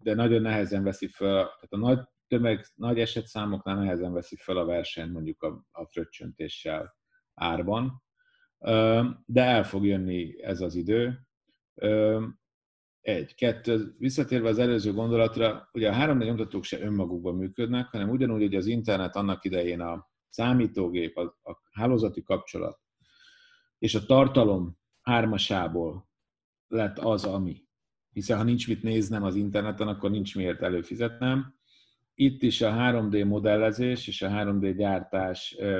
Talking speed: 135 wpm